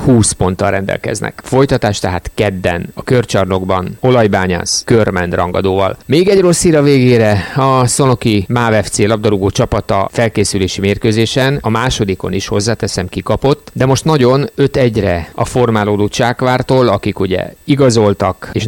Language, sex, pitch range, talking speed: Hungarian, male, 95-120 Hz, 130 wpm